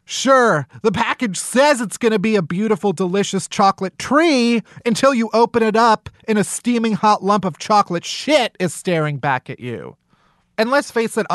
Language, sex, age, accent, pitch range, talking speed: English, male, 30-49, American, 150-215 Hz, 185 wpm